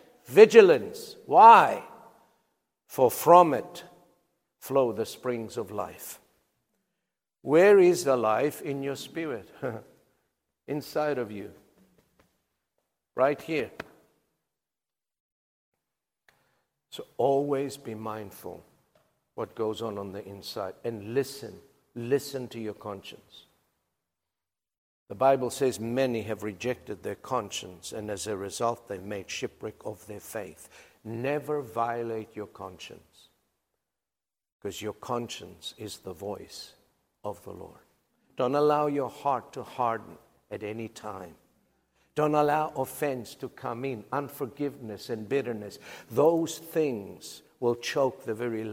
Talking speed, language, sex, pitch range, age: 115 wpm, English, male, 110-145 Hz, 60-79